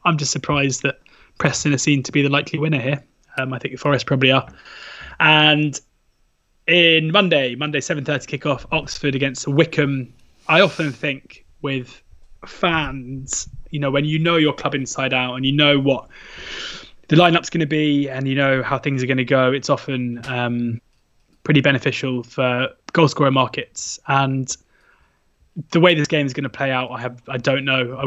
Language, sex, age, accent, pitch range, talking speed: English, male, 20-39, British, 130-145 Hz, 180 wpm